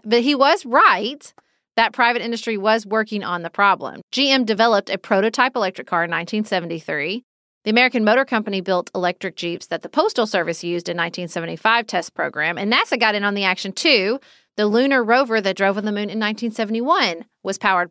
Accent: American